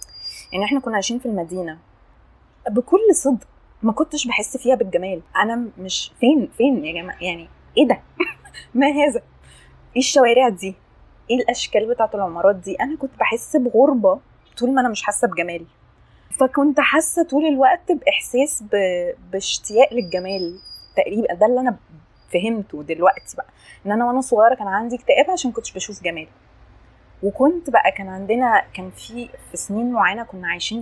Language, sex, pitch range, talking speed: Arabic, female, 190-260 Hz, 150 wpm